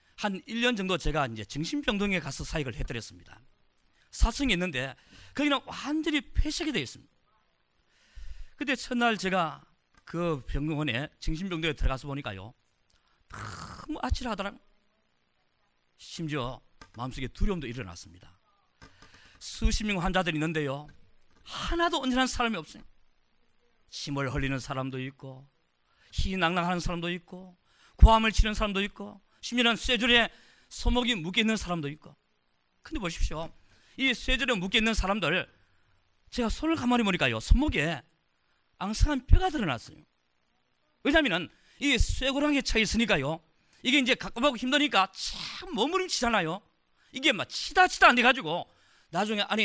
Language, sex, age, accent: Korean, male, 40-59, native